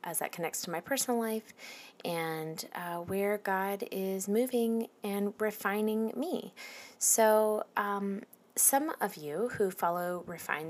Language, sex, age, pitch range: English, female, 30-49, 150-205 Hz